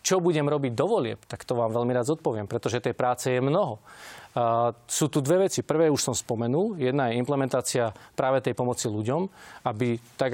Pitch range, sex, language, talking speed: 120-140 Hz, male, Slovak, 185 wpm